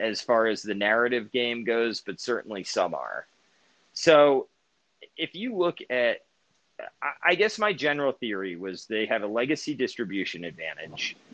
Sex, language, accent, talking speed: male, English, American, 150 wpm